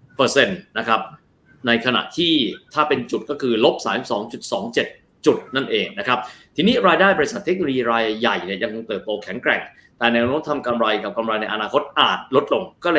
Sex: male